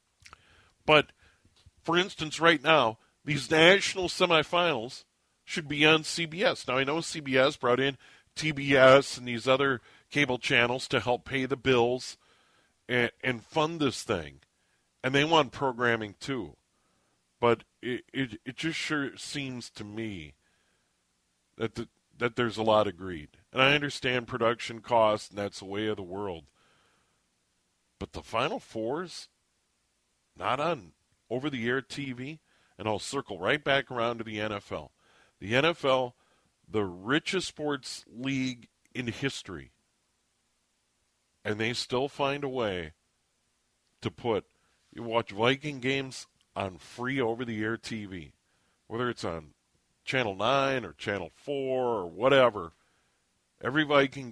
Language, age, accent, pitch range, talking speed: English, 40-59, American, 100-140 Hz, 135 wpm